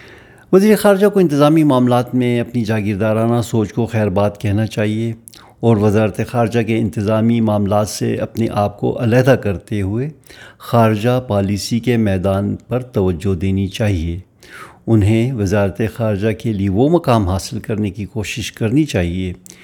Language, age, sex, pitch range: Urdu, 60-79, male, 100-120 Hz